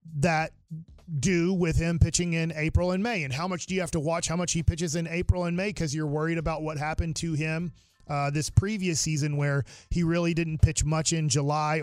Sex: male